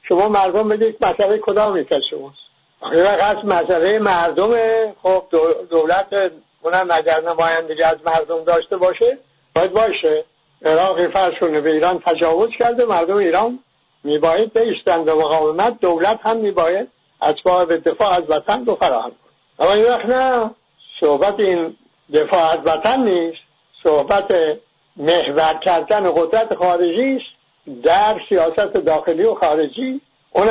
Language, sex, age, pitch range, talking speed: English, male, 60-79, 160-215 Hz, 130 wpm